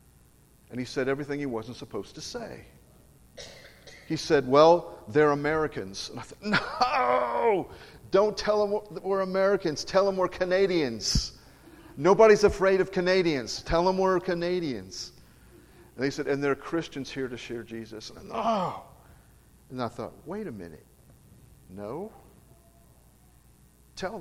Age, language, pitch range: 50-69, English, 95-155 Hz